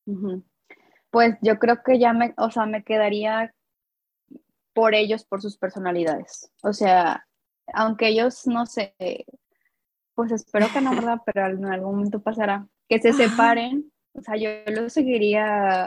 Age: 20-39